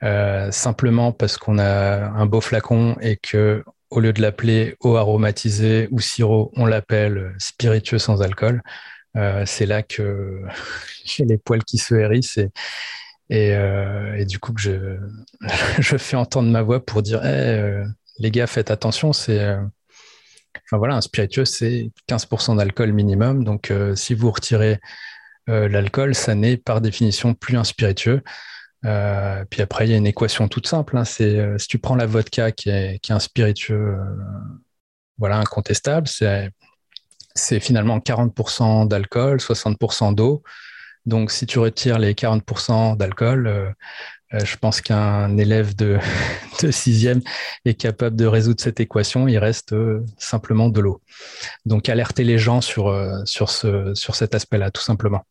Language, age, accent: French, 30-49, French